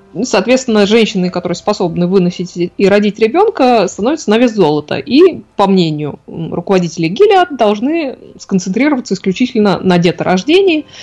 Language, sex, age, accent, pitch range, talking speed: Russian, female, 20-39, native, 175-225 Hz, 120 wpm